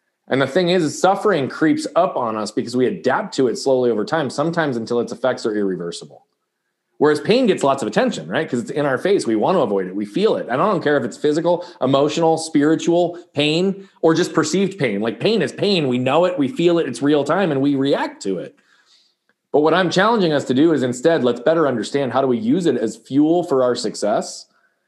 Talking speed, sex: 235 wpm, male